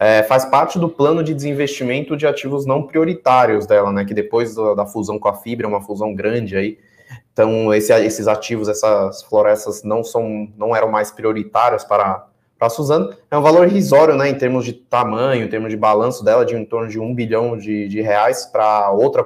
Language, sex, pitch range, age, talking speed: Portuguese, male, 105-130 Hz, 20-39, 195 wpm